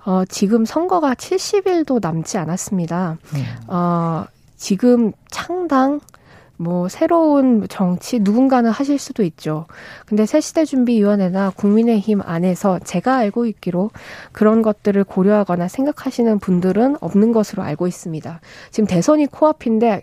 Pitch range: 180-245 Hz